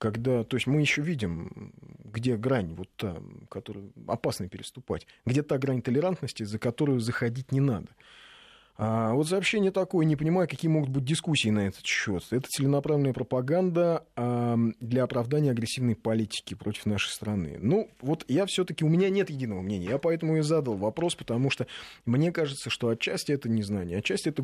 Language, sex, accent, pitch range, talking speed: Russian, male, native, 105-145 Hz, 170 wpm